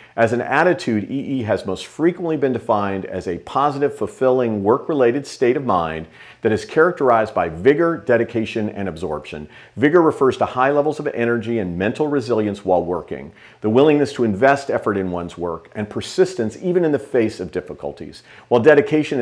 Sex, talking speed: male, 170 wpm